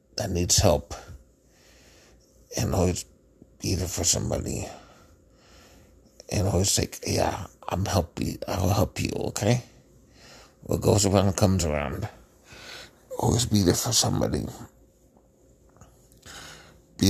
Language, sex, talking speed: English, male, 105 wpm